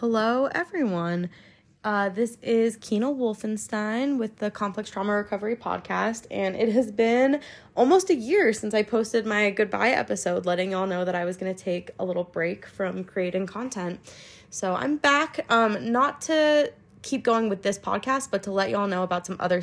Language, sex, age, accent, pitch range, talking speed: English, female, 20-39, American, 180-235 Hz, 185 wpm